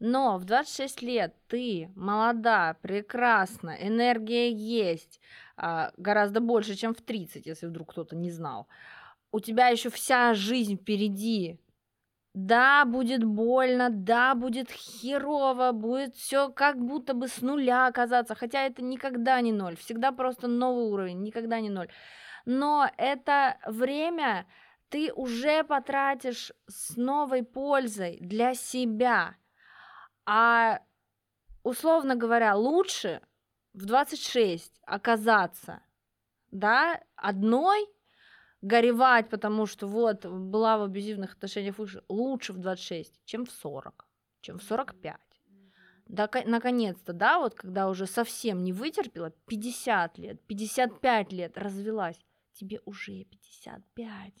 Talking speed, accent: 115 wpm, native